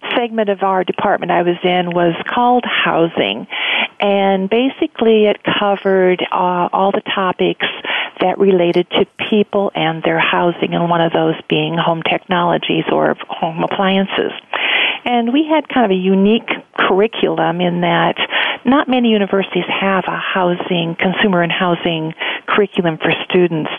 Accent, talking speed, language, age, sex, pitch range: American, 145 wpm, English, 50-69, female, 175-215 Hz